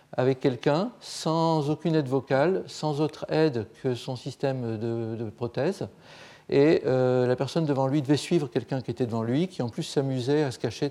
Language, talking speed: French, 195 wpm